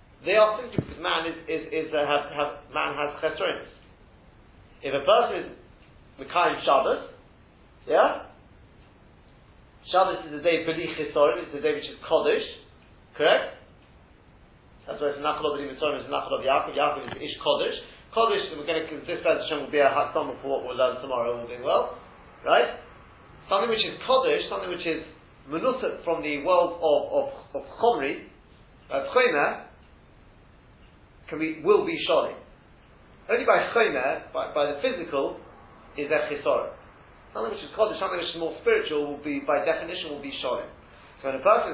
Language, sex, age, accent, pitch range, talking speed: English, male, 40-59, British, 145-215 Hz, 170 wpm